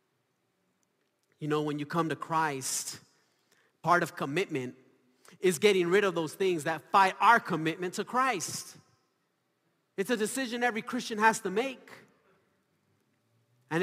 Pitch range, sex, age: 150-230 Hz, male, 40-59